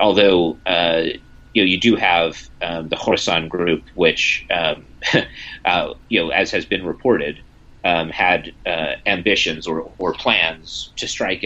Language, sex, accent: English, male, American